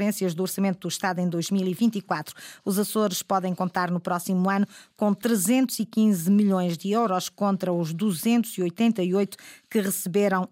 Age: 20-39